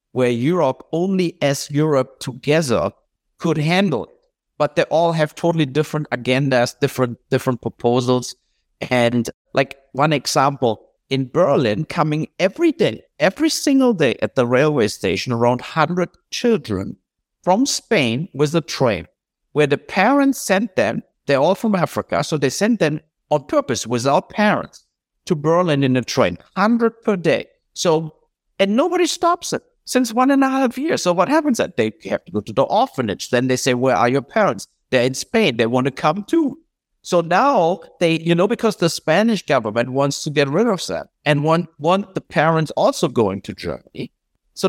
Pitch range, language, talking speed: 135-205 Hz, English, 175 wpm